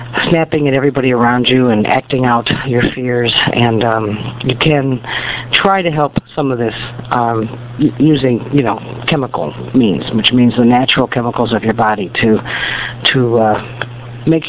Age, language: 50-69, English